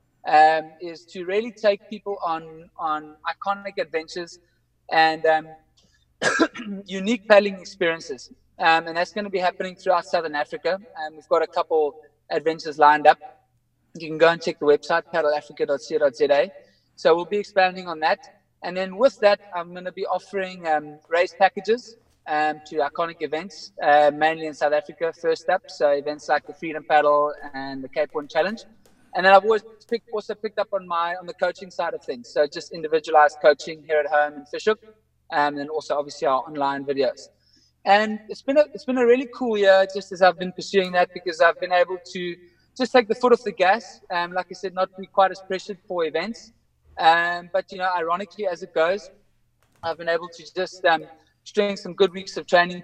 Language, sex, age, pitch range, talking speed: English, male, 20-39, 155-195 Hz, 195 wpm